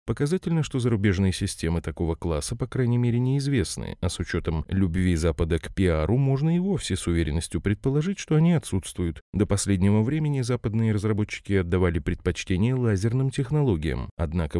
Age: 30-49